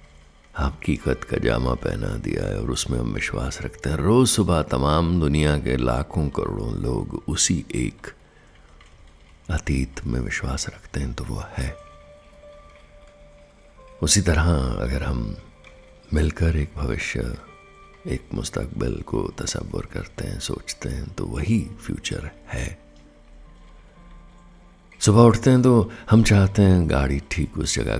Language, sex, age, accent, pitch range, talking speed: Hindi, male, 60-79, native, 75-100 Hz, 130 wpm